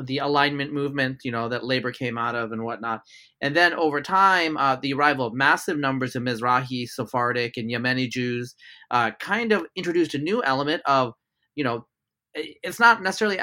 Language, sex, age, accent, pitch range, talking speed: English, male, 30-49, American, 125-155 Hz, 185 wpm